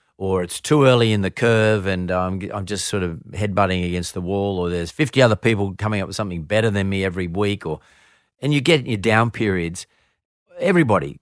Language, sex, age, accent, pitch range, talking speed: English, male, 50-69, Australian, 95-120 Hz, 210 wpm